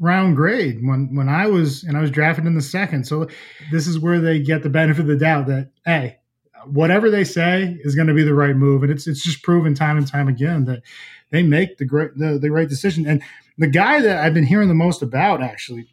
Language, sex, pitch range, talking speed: English, male, 140-175 Hz, 245 wpm